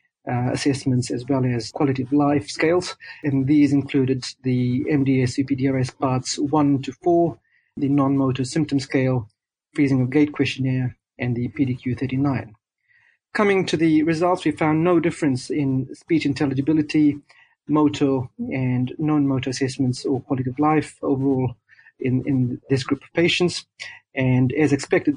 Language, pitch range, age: English, 130-150 Hz, 40-59